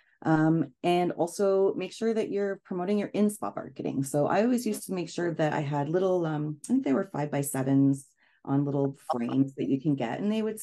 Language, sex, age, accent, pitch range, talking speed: English, female, 30-49, American, 135-175 Hz, 230 wpm